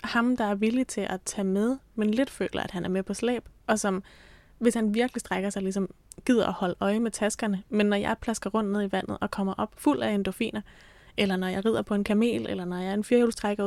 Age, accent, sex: 20-39, native, female